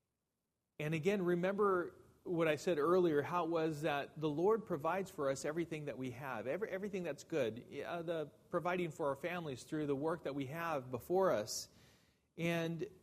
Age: 40-59